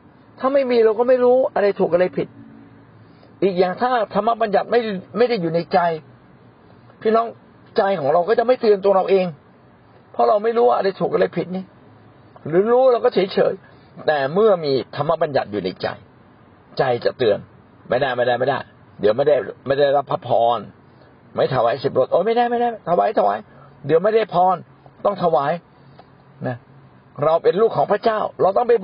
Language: Thai